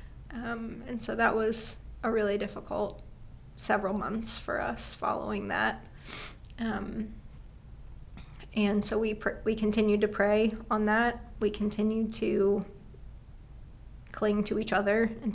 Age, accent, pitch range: 20-39, American, 205-225 Hz